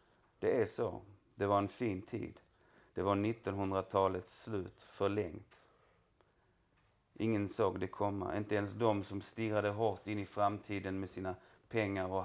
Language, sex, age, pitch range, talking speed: Swedish, male, 30-49, 95-110 Hz, 145 wpm